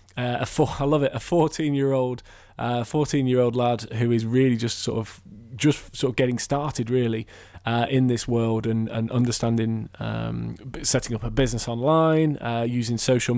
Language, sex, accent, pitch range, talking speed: English, male, British, 115-135 Hz, 175 wpm